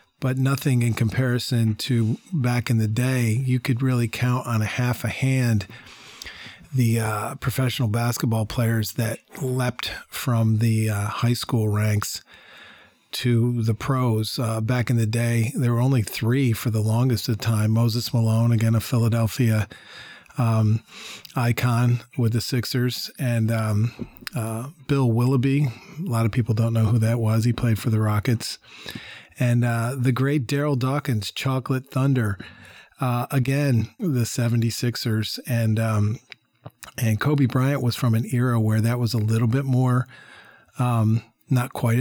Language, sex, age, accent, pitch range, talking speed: English, male, 40-59, American, 115-130 Hz, 155 wpm